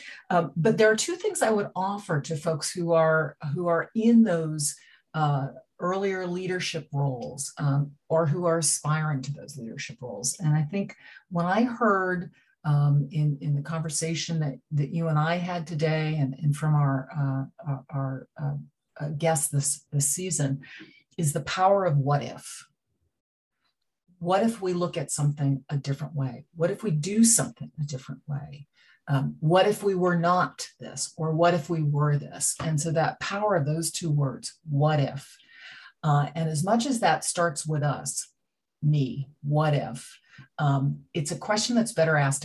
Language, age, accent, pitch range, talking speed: English, 50-69, American, 140-175 Hz, 175 wpm